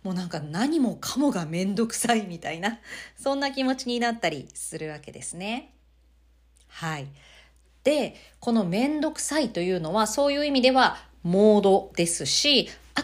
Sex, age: female, 40-59